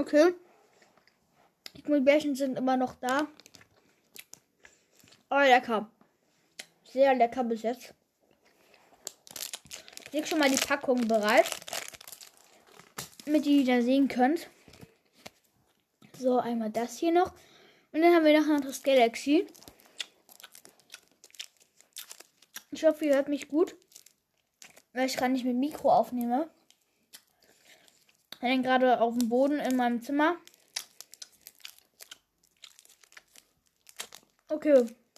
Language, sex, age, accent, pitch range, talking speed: German, female, 10-29, German, 250-305 Hz, 100 wpm